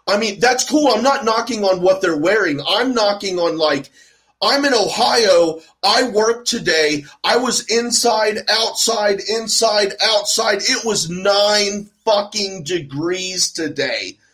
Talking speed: 140 wpm